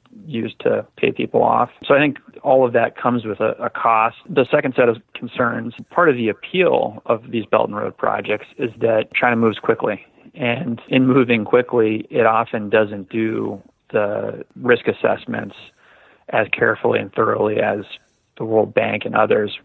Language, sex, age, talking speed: English, male, 30-49, 175 wpm